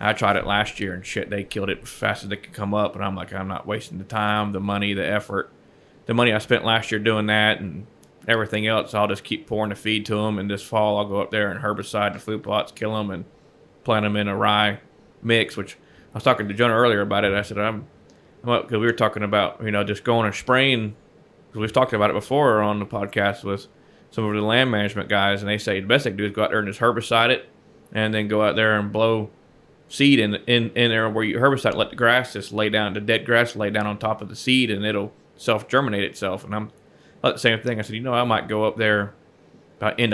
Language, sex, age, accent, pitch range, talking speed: English, male, 20-39, American, 105-115 Hz, 265 wpm